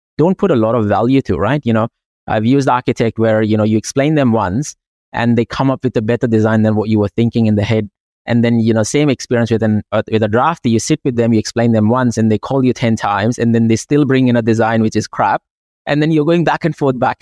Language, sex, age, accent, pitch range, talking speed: English, male, 20-39, Indian, 110-135 Hz, 280 wpm